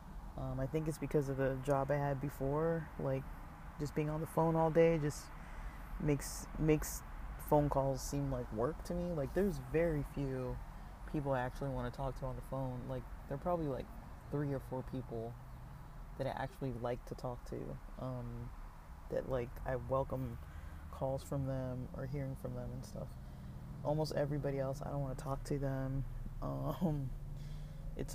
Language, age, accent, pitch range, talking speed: English, 20-39, American, 125-140 Hz, 180 wpm